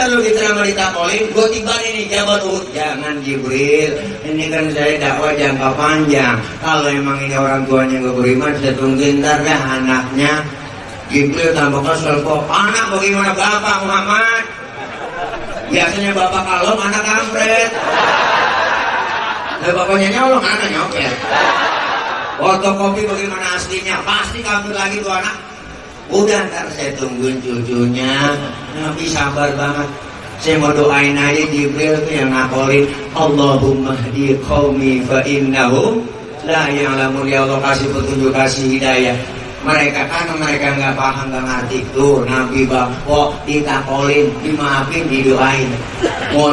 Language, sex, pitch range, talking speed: Indonesian, male, 135-170 Hz, 130 wpm